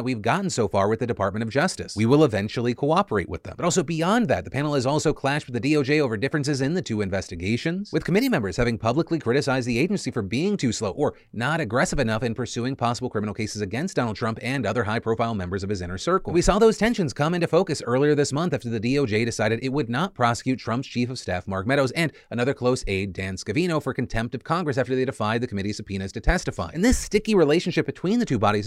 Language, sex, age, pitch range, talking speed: English, male, 30-49, 110-150 Hz, 245 wpm